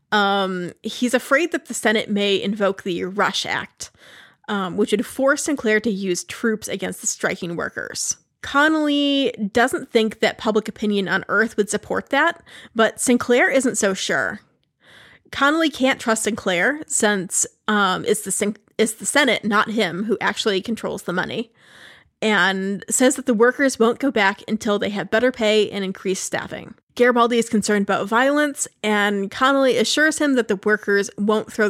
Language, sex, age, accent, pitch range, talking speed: English, female, 30-49, American, 205-250 Hz, 165 wpm